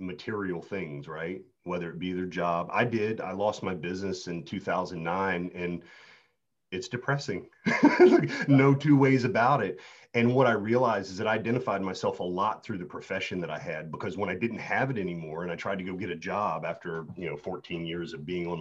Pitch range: 90-125 Hz